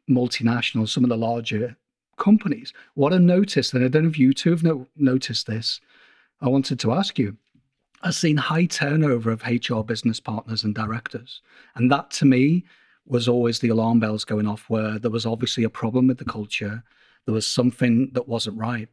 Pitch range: 115-135 Hz